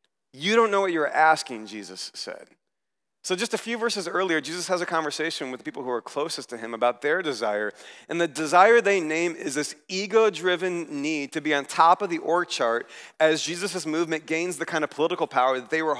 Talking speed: 220 wpm